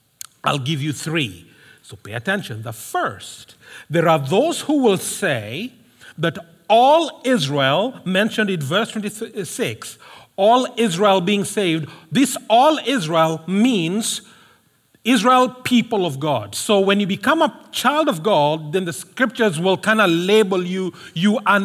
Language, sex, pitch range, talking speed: English, male, 170-240 Hz, 145 wpm